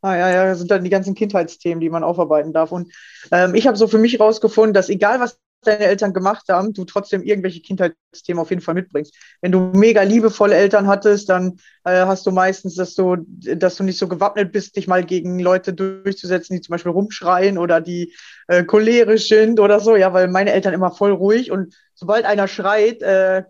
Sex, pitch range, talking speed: female, 180-215 Hz, 215 wpm